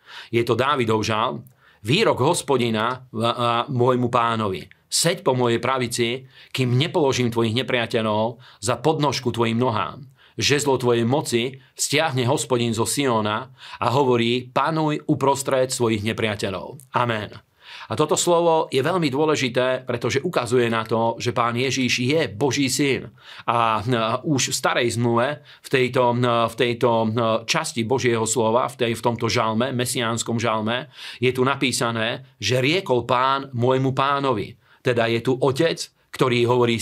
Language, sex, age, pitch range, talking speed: Slovak, male, 40-59, 115-135 Hz, 140 wpm